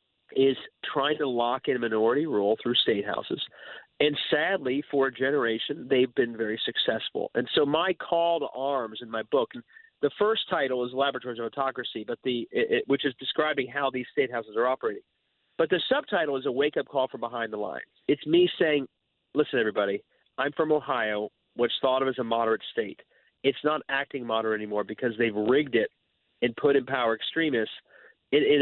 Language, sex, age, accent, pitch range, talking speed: English, male, 40-59, American, 120-160 Hz, 195 wpm